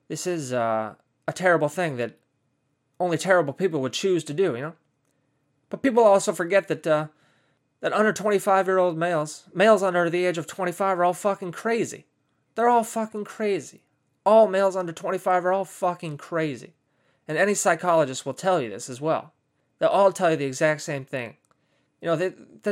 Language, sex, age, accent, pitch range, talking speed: English, male, 20-39, American, 140-180 Hz, 185 wpm